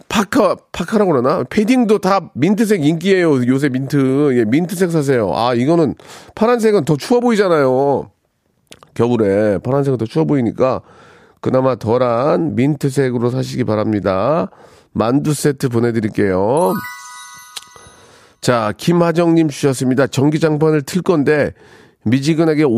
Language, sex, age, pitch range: Korean, male, 40-59, 120-165 Hz